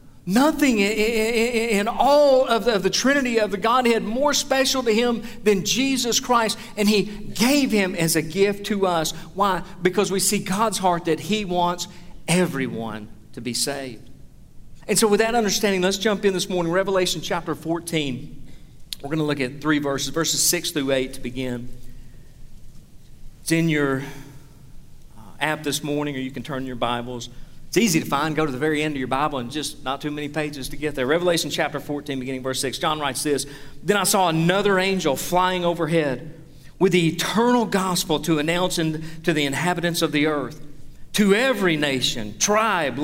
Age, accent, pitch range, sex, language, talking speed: 40-59, American, 140-205 Hz, male, English, 180 wpm